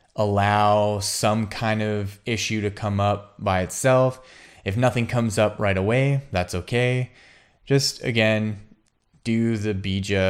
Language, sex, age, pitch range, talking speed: English, male, 20-39, 90-115 Hz, 135 wpm